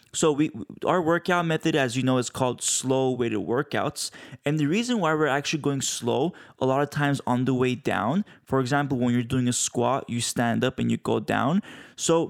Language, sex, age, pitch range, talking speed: English, male, 20-39, 125-150 Hz, 210 wpm